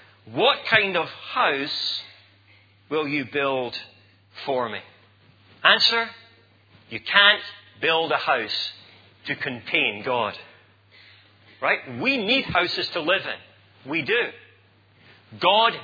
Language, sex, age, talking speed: English, male, 40-59, 105 wpm